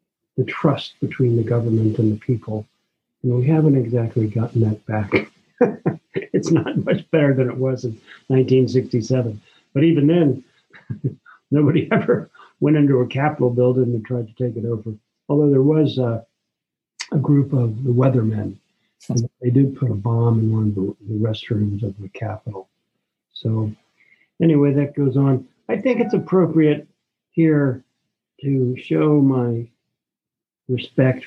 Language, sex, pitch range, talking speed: English, male, 115-150 Hz, 145 wpm